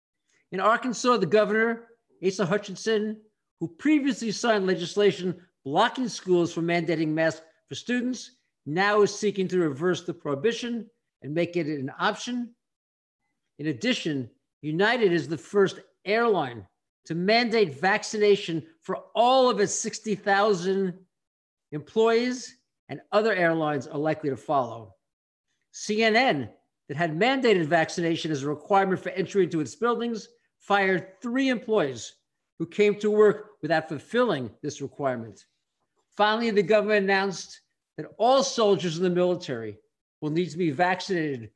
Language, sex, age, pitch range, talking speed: English, male, 50-69, 160-215 Hz, 130 wpm